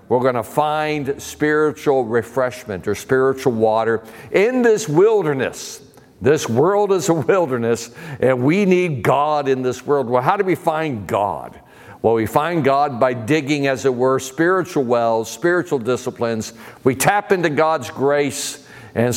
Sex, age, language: male, 60-79, English